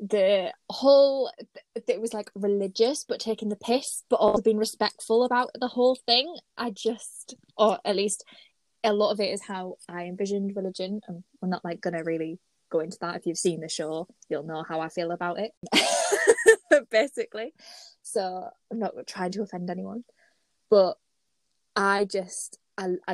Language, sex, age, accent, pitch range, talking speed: English, female, 10-29, British, 180-230 Hz, 170 wpm